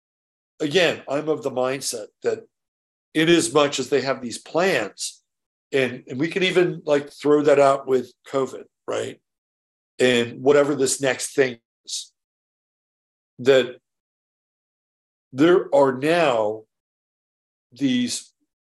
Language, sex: English, male